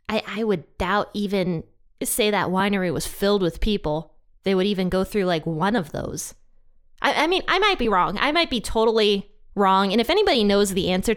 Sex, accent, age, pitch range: female, American, 20-39, 180-225 Hz